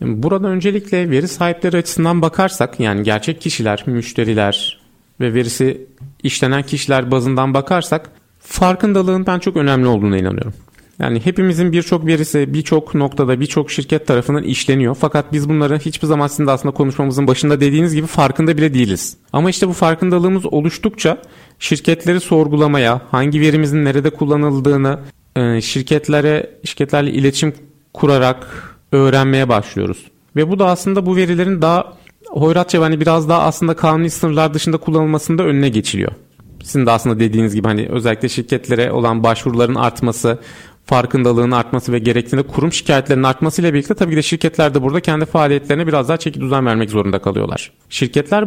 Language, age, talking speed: Turkish, 40-59, 145 wpm